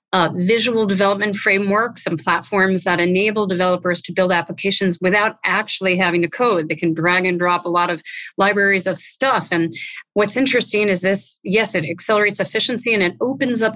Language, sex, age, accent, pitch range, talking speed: English, female, 30-49, American, 175-205 Hz, 180 wpm